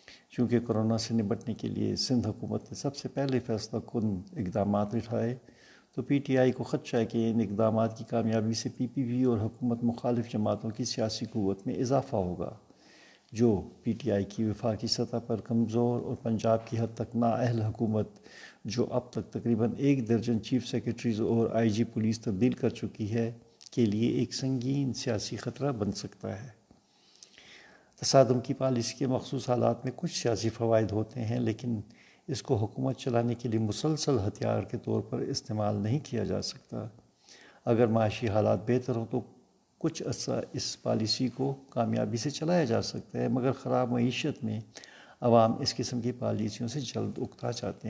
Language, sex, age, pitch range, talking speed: Urdu, male, 50-69, 110-125 Hz, 180 wpm